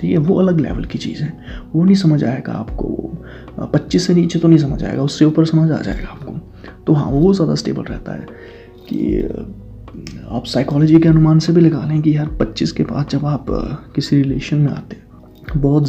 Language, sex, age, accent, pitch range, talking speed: Hindi, male, 20-39, native, 130-165 Hz, 205 wpm